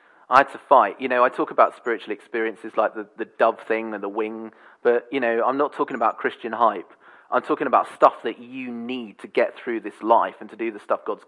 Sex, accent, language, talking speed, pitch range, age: male, British, English, 245 wpm, 115-145 Hz, 30-49